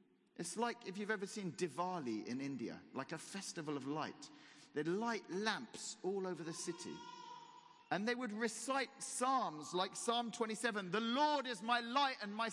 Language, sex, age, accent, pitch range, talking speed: English, male, 40-59, British, 175-235 Hz, 170 wpm